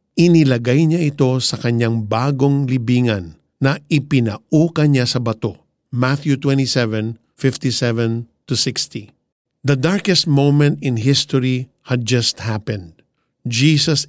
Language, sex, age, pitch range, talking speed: Filipino, male, 50-69, 120-150 Hz, 110 wpm